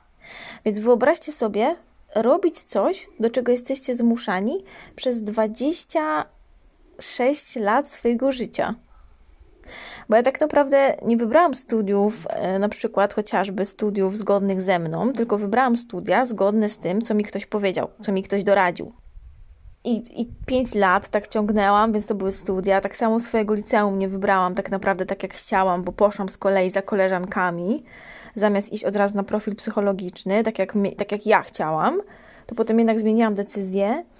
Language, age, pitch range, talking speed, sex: Polish, 20-39, 200-255 Hz, 155 wpm, female